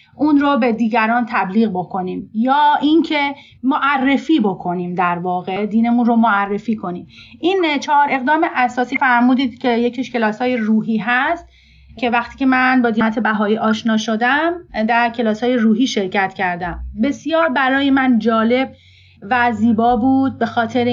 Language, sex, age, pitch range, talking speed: Persian, female, 30-49, 225-280 Hz, 140 wpm